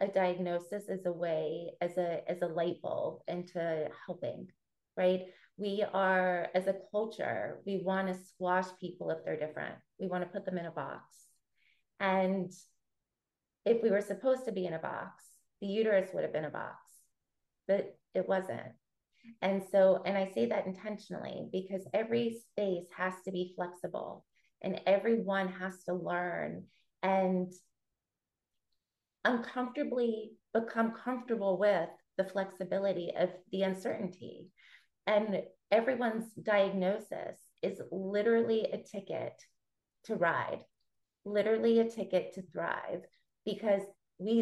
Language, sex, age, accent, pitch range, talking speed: English, female, 30-49, American, 180-215 Hz, 130 wpm